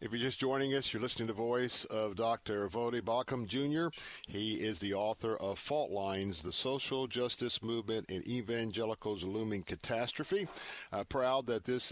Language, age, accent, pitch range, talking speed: English, 50-69, American, 110-135 Hz, 170 wpm